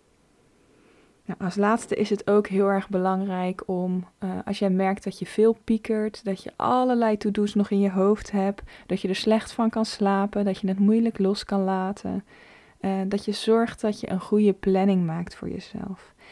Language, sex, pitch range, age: Dutch, female, 190-220 Hz, 20-39